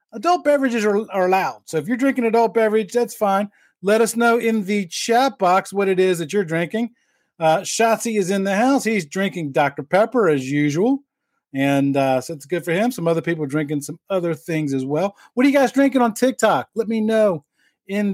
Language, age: English, 40-59